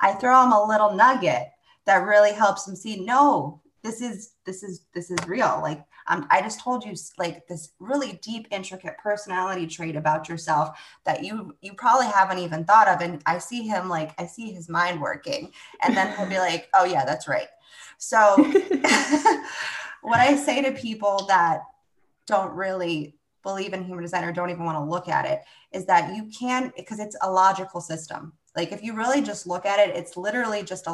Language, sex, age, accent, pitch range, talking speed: English, female, 20-39, American, 170-220 Hz, 200 wpm